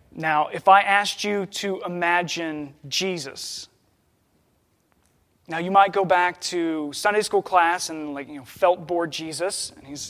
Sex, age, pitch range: male, 20-39, 160-205 Hz